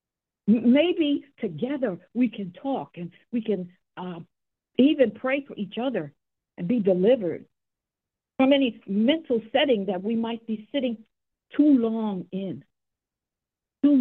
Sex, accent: female, American